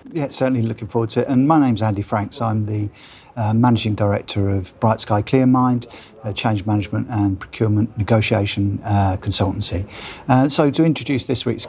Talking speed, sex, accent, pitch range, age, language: 180 wpm, male, British, 105-125 Hz, 50-69, English